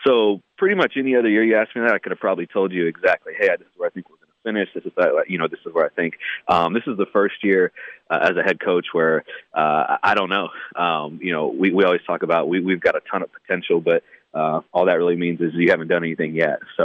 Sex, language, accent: male, English, American